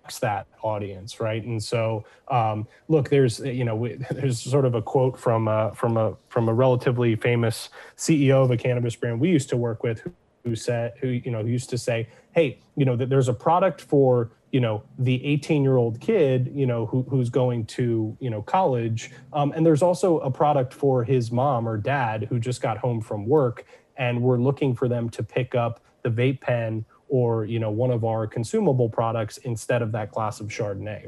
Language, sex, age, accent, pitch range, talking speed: English, male, 30-49, American, 115-135 Hz, 205 wpm